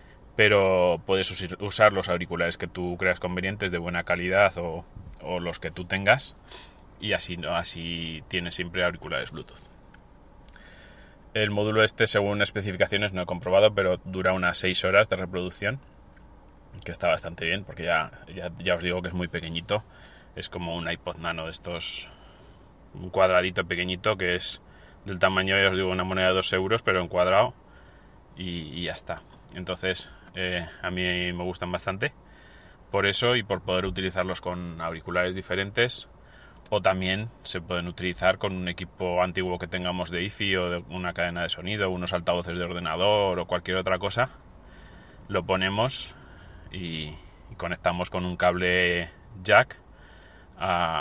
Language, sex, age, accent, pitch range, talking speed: Spanish, male, 20-39, Spanish, 90-95 Hz, 160 wpm